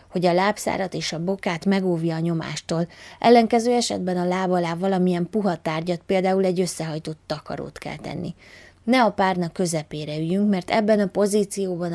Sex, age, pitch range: female, 20-39, 155-190 Hz